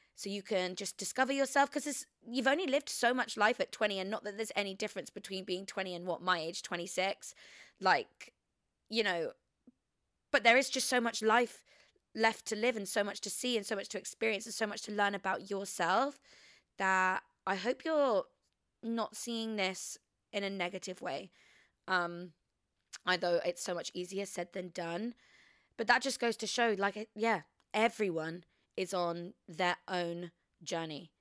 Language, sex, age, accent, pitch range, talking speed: English, female, 20-39, British, 185-230 Hz, 180 wpm